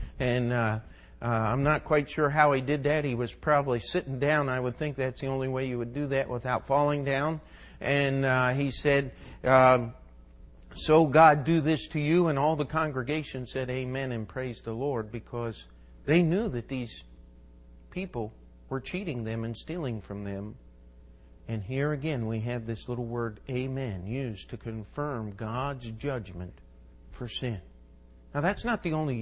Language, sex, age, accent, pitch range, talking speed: English, male, 50-69, American, 110-155 Hz, 175 wpm